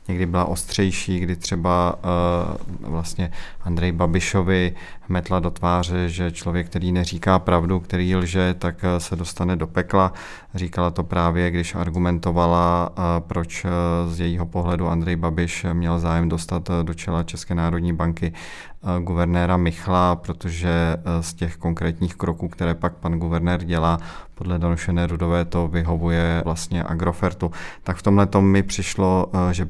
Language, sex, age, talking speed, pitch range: Czech, male, 30-49, 135 wpm, 85-95 Hz